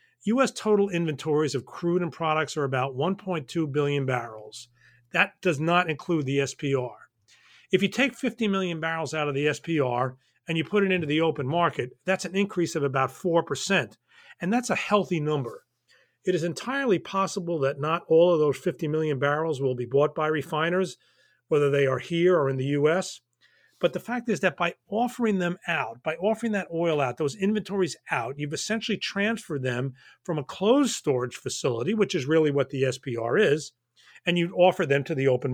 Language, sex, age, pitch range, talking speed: English, male, 40-59, 140-185 Hz, 190 wpm